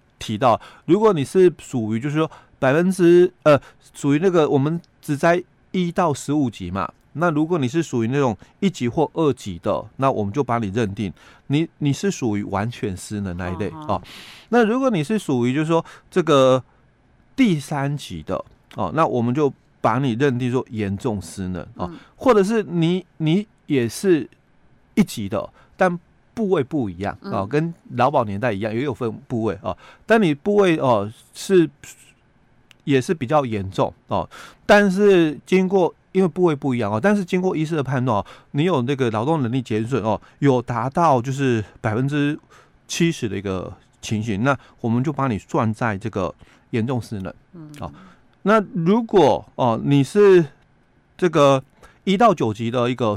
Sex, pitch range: male, 115-170 Hz